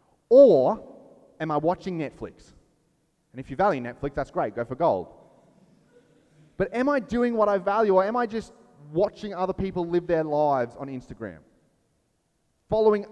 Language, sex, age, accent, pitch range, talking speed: English, male, 20-39, Australian, 130-205 Hz, 160 wpm